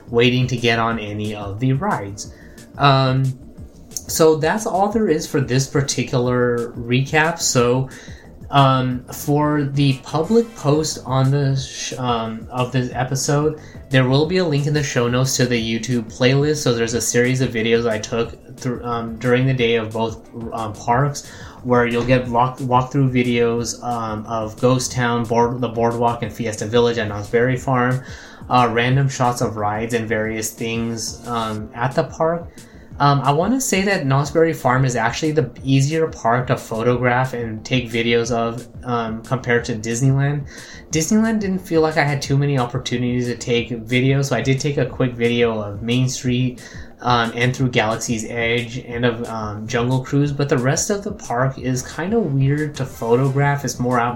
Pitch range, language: 115-135 Hz, English